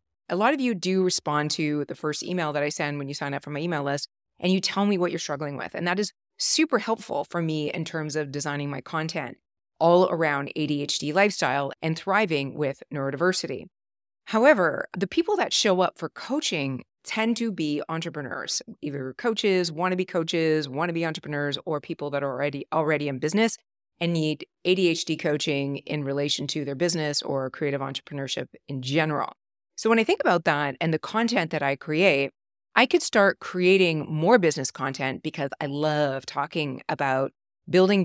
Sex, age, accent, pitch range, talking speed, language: female, 30-49, American, 145-180 Hz, 190 wpm, English